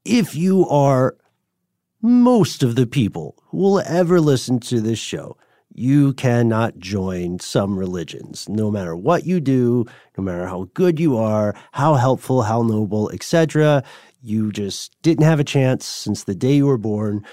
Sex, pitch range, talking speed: male, 100-135 Hz, 165 wpm